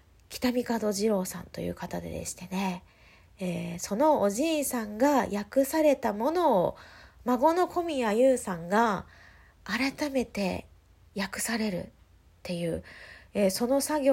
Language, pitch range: Japanese, 175-245 Hz